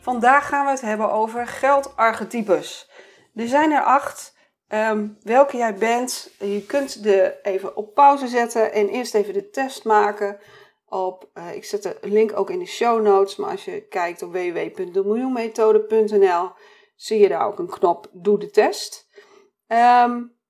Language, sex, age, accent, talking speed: Dutch, female, 40-59, Dutch, 160 wpm